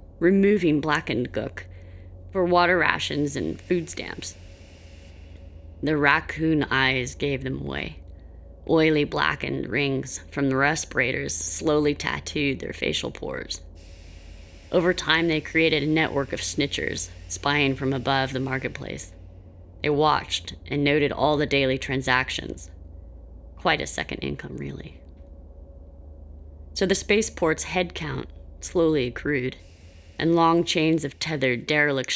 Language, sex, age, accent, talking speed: English, female, 30-49, American, 120 wpm